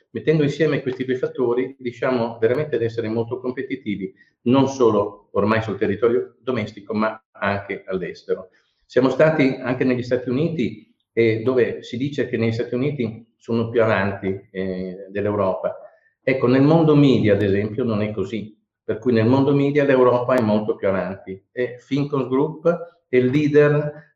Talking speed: 160 wpm